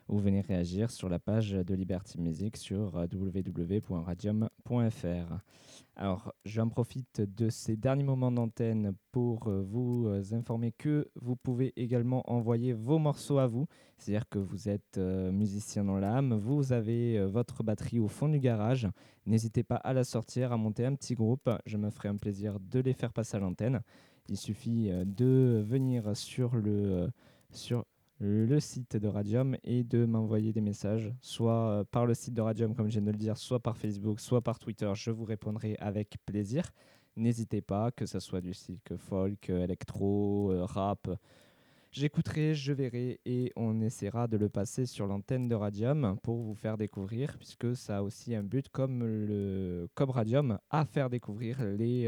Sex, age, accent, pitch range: male, 20-39, French, 100-125 Hz